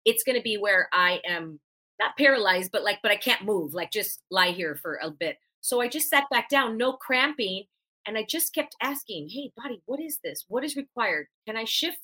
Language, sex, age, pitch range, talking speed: English, female, 30-49, 195-275 Hz, 230 wpm